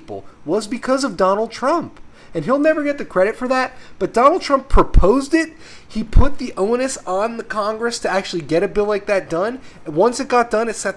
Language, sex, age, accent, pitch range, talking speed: English, male, 20-39, American, 135-225 Hz, 220 wpm